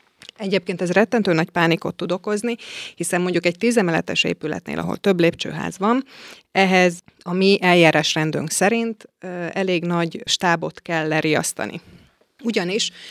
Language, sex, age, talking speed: Hungarian, female, 30-49, 125 wpm